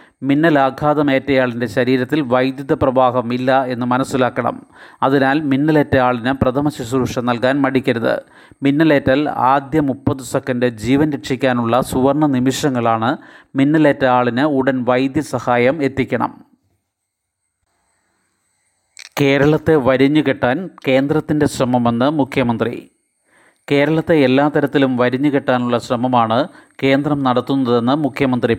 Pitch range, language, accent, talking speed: 125-140 Hz, Malayalam, native, 80 wpm